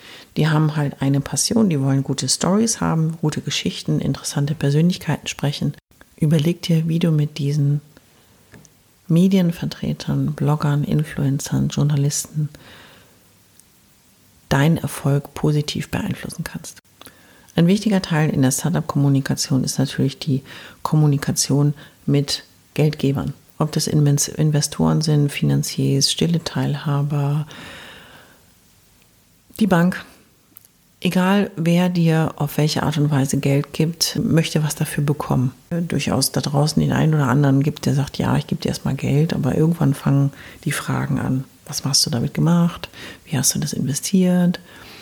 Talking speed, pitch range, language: 130 wpm, 140-165 Hz, German